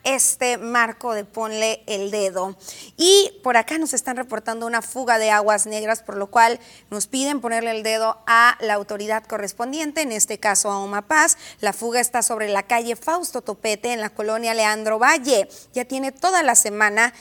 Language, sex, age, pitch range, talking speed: Spanish, female, 30-49, 220-280 Hz, 180 wpm